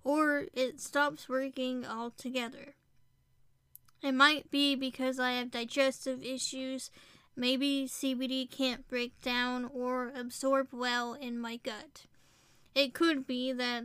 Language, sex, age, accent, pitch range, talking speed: English, female, 20-39, American, 240-270 Hz, 120 wpm